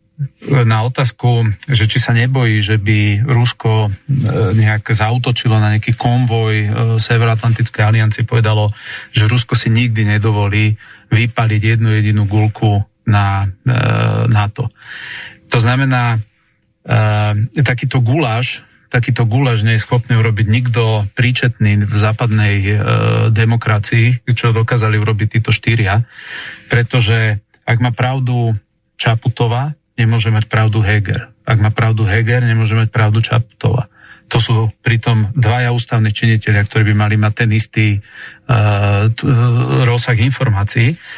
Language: Slovak